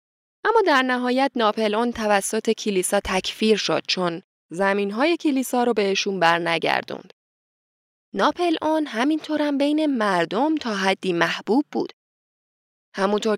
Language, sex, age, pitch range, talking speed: Persian, female, 10-29, 185-255 Hz, 110 wpm